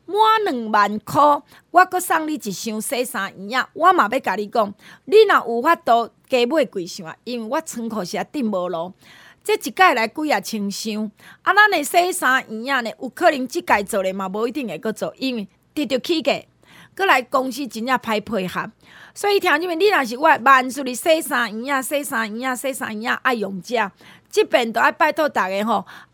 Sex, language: female, Chinese